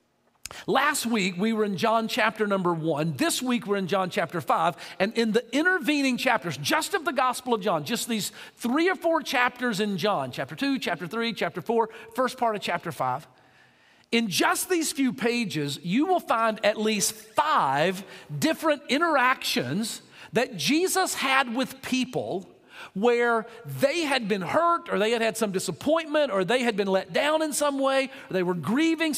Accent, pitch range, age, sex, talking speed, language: American, 190-270 Hz, 50-69, male, 180 wpm, English